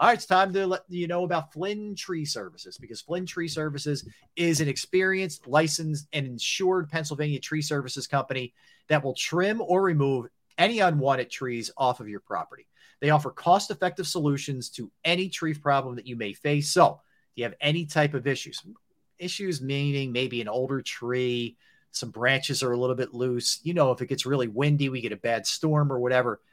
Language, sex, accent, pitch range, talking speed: English, male, American, 130-165 Hz, 190 wpm